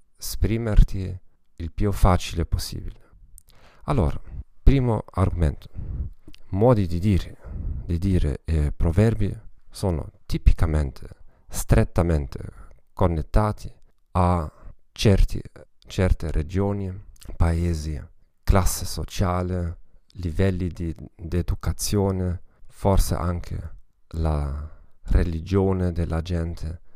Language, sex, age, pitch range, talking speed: Italian, male, 40-59, 80-100 Hz, 75 wpm